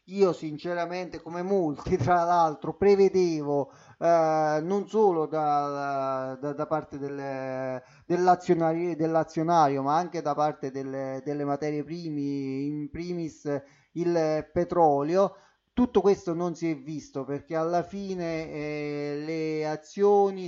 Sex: male